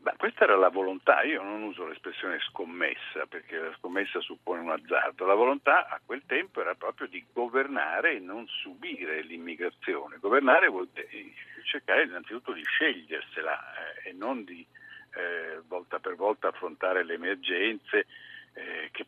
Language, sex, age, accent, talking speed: Italian, male, 60-79, native, 155 wpm